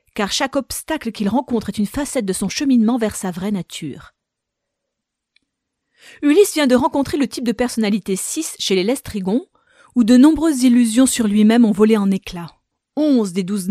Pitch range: 200-255 Hz